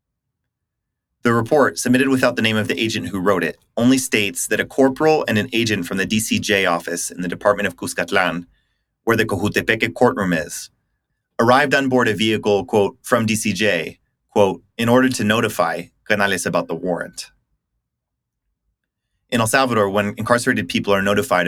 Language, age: English, 30-49